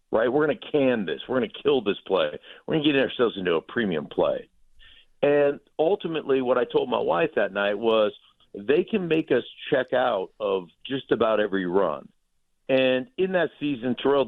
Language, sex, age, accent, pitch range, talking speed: English, male, 50-69, American, 115-150 Hz, 200 wpm